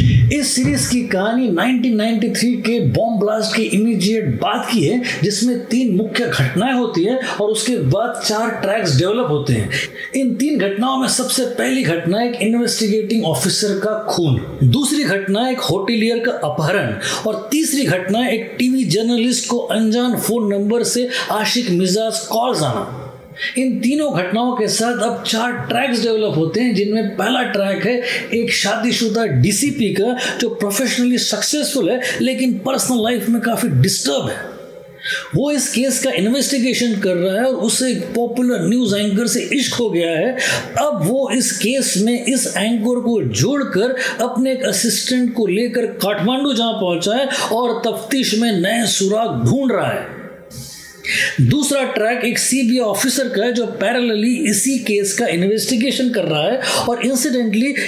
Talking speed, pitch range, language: 160 wpm, 210-250 Hz, Hindi